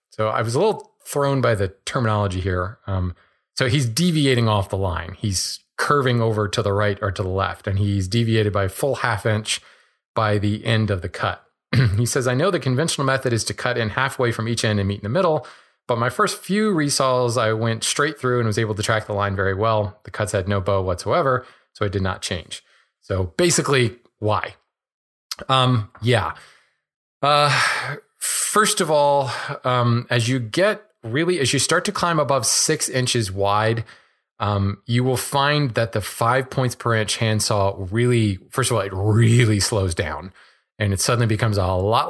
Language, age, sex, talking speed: English, 30-49, male, 195 wpm